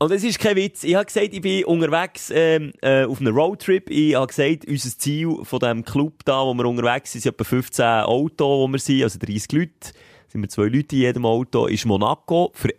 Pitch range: 130-170 Hz